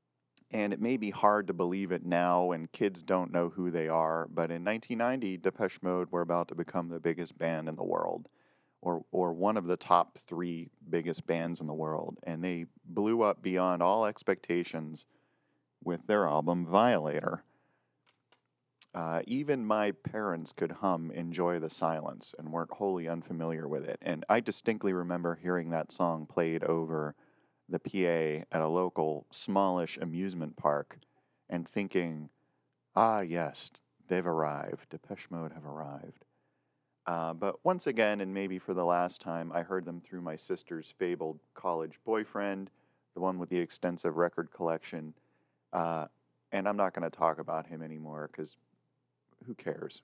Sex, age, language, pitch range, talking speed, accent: male, 40-59, English, 80-90 Hz, 160 wpm, American